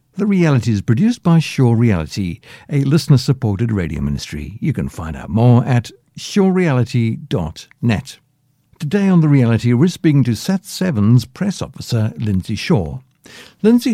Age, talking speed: 60-79, 135 wpm